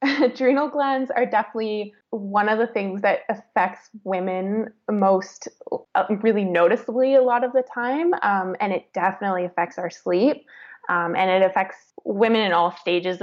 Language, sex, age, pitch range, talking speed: English, female, 20-39, 185-245 Hz, 160 wpm